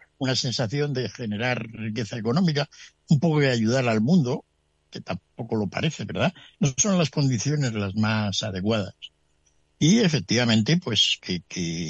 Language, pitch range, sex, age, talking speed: Spanish, 85-125 Hz, male, 60-79, 145 wpm